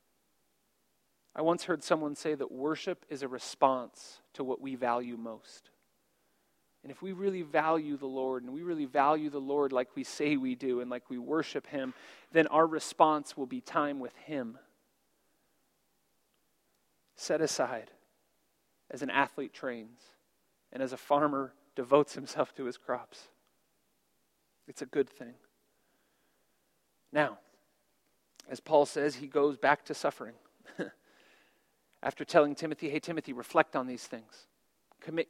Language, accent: English, American